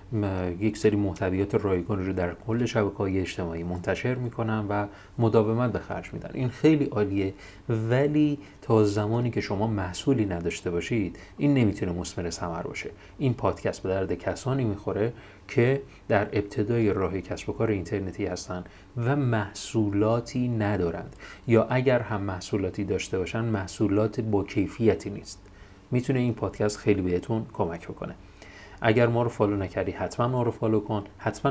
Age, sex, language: 30-49, male, Persian